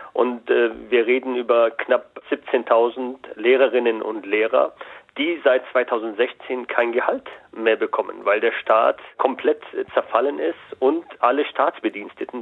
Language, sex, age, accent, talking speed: German, male, 40-59, German, 125 wpm